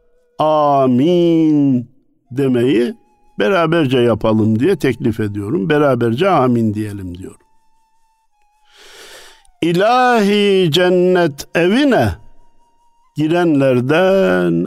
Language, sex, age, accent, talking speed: Turkish, male, 60-79, native, 60 wpm